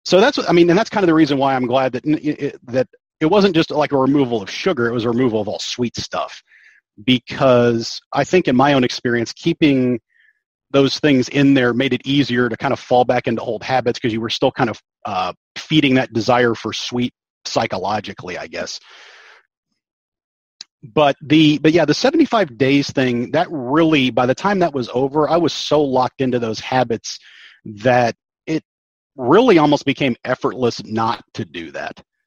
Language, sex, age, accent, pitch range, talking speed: English, male, 30-49, American, 120-145 Hz, 190 wpm